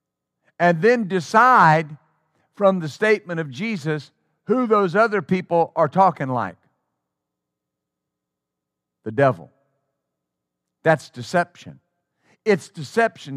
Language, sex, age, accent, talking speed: English, male, 50-69, American, 95 wpm